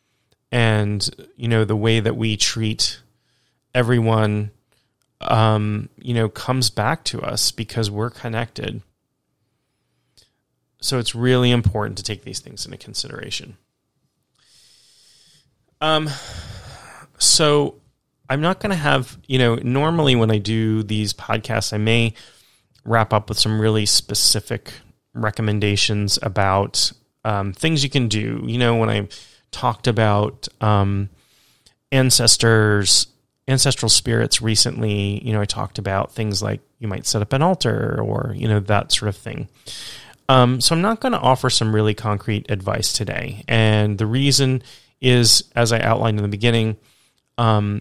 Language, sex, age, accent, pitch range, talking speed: English, male, 30-49, American, 105-125 Hz, 140 wpm